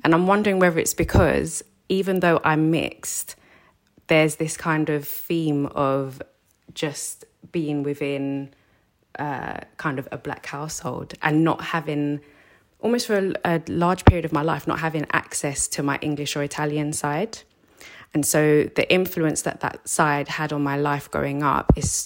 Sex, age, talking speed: female, 20-39, 165 wpm